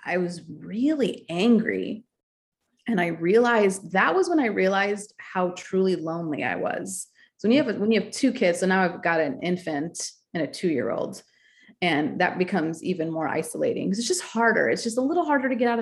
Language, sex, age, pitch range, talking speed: English, female, 30-49, 165-210 Hz, 210 wpm